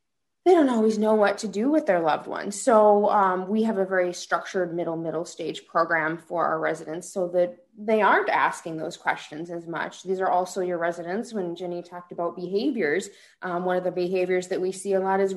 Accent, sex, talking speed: American, female, 215 wpm